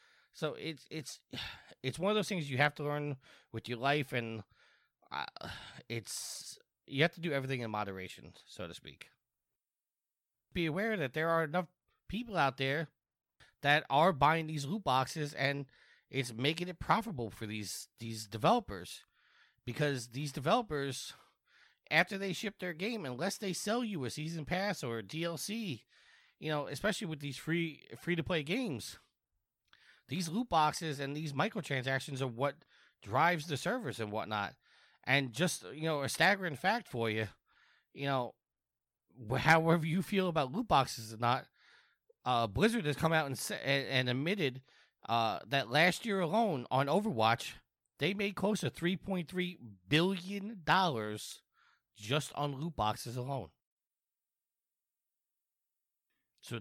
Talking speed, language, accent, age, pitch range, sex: 145 wpm, English, American, 30-49, 125-180 Hz, male